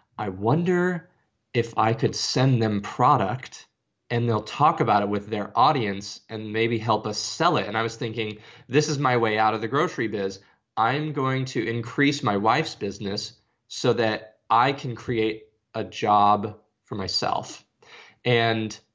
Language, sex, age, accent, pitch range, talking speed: English, male, 20-39, American, 105-120 Hz, 165 wpm